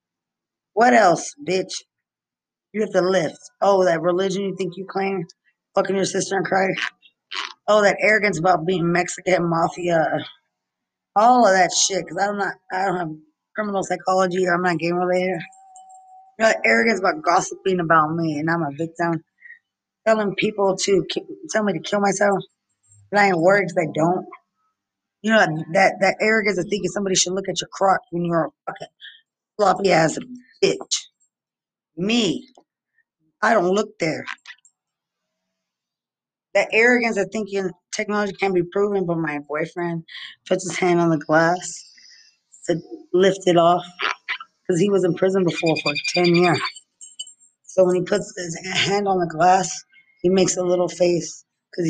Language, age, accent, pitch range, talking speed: English, 20-39, American, 165-200 Hz, 165 wpm